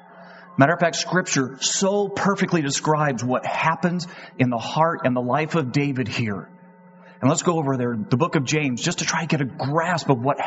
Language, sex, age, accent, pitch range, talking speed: English, male, 30-49, American, 135-180 Hz, 205 wpm